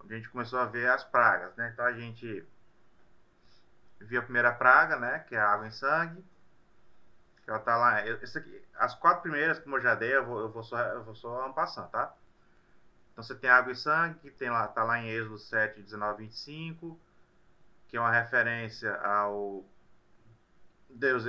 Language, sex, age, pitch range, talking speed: Portuguese, male, 20-39, 110-130 Hz, 185 wpm